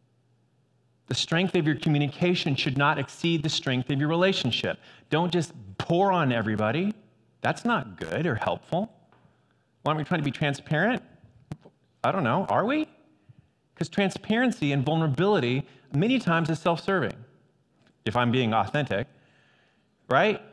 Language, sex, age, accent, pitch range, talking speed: English, male, 30-49, American, 130-170 Hz, 140 wpm